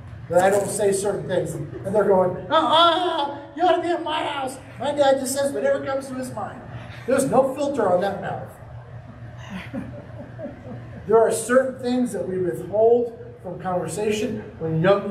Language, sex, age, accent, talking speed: English, male, 40-59, American, 170 wpm